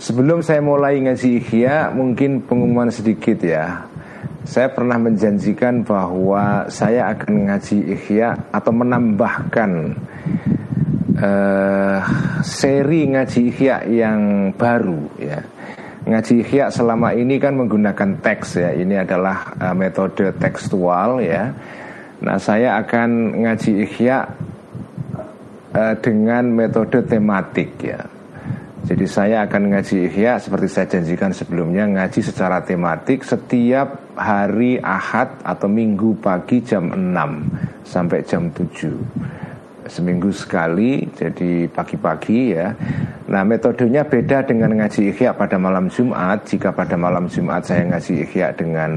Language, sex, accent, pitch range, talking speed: Indonesian, male, native, 100-125 Hz, 115 wpm